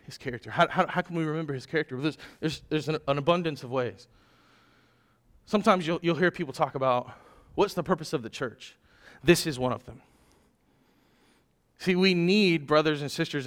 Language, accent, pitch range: English, American, 145-200 Hz